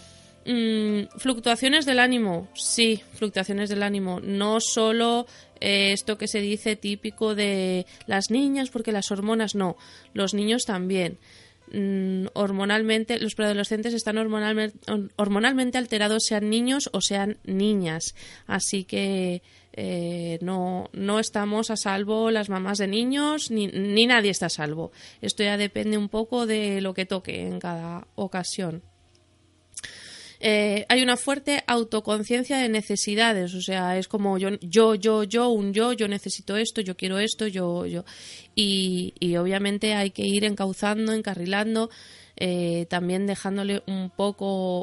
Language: Spanish